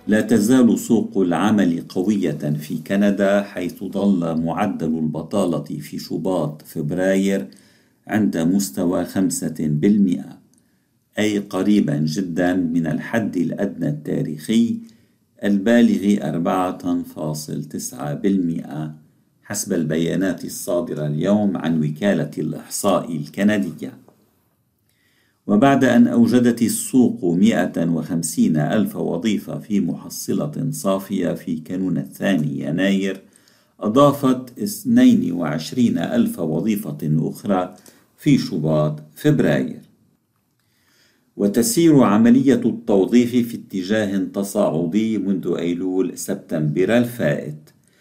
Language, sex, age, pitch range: Arabic, male, 50-69, 80-115 Hz